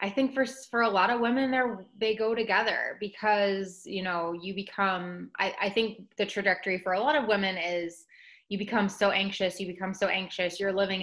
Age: 20-39